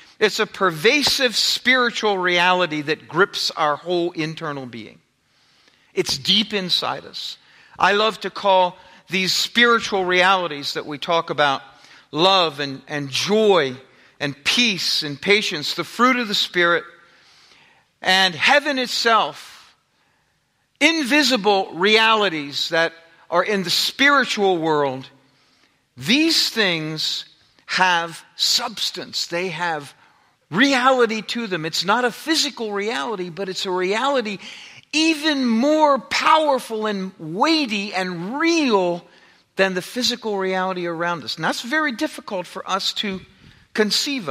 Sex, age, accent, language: male, 50-69, American, English